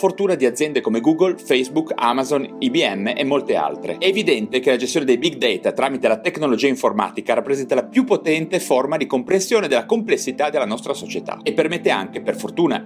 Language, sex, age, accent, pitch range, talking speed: Italian, male, 40-59, native, 155-245 Hz, 185 wpm